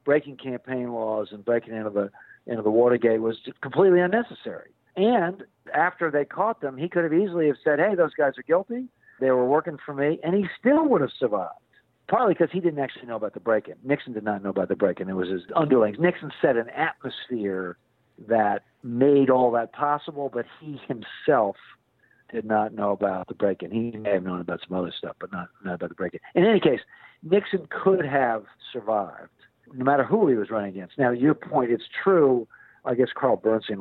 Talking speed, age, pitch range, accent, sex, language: 210 wpm, 50-69, 110-145 Hz, American, male, English